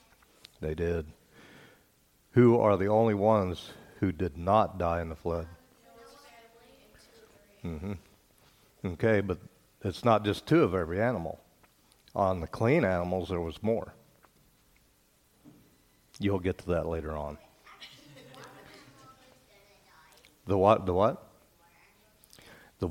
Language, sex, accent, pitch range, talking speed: English, male, American, 90-110 Hz, 110 wpm